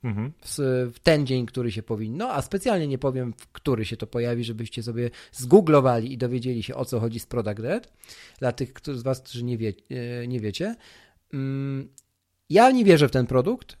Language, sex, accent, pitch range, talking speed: Polish, male, native, 115-155 Hz, 185 wpm